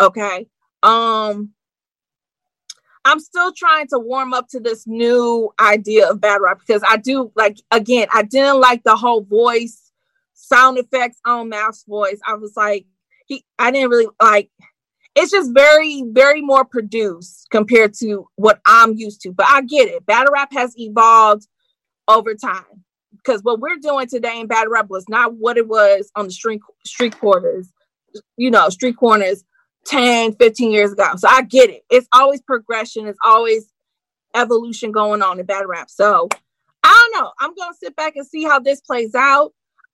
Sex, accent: female, American